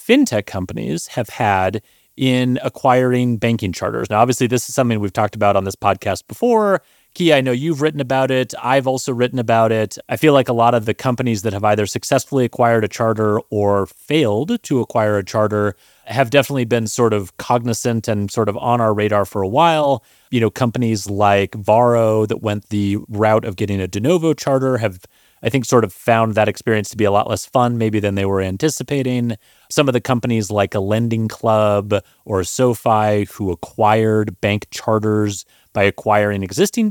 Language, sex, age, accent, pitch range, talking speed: English, male, 30-49, American, 105-130 Hz, 195 wpm